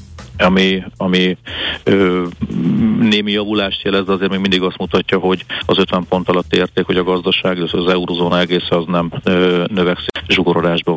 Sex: male